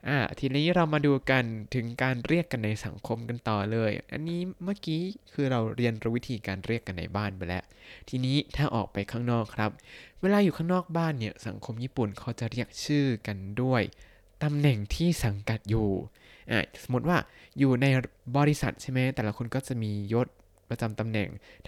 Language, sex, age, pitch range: Thai, male, 20-39, 110-140 Hz